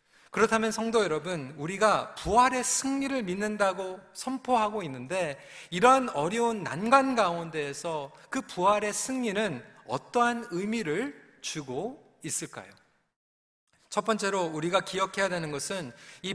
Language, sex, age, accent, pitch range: Korean, male, 40-59, native, 185-245 Hz